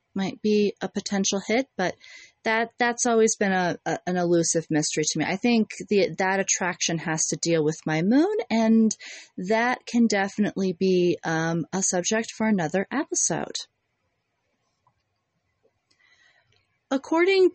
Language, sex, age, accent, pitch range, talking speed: English, female, 30-49, American, 160-200 Hz, 135 wpm